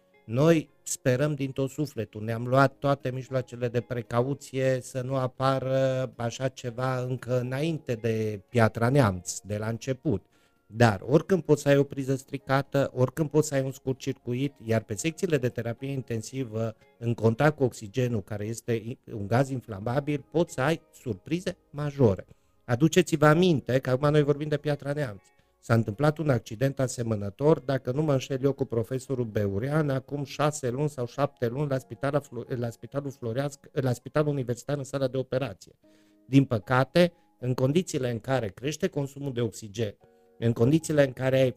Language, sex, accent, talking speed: Romanian, male, native, 165 wpm